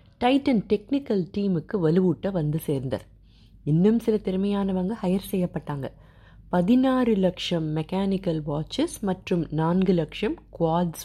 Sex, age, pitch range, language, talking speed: female, 30-49, 150-200 Hz, Tamil, 105 wpm